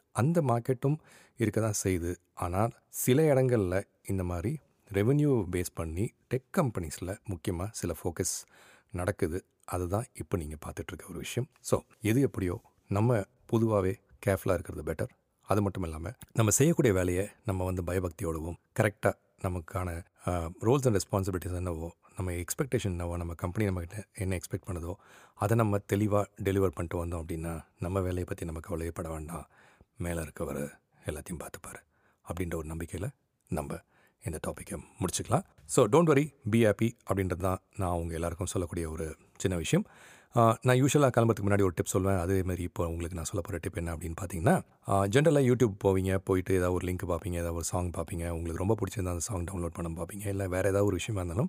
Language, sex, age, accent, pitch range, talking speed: Tamil, male, 40-59, native, 85-105 Hz, 160 wpm